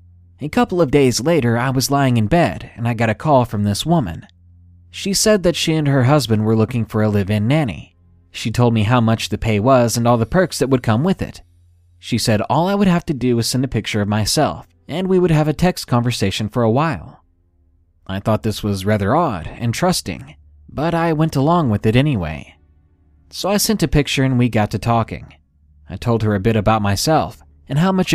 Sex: male